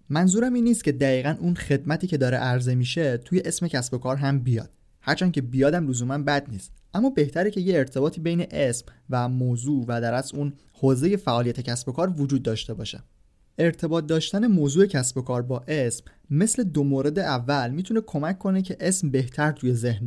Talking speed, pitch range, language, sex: 195 wpm, 125-170 Hz, Persian, male